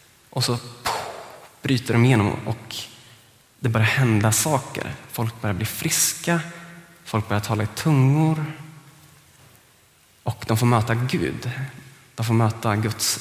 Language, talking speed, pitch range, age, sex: Swedish, 130 wpm, 115-145 Hz, 20-39, male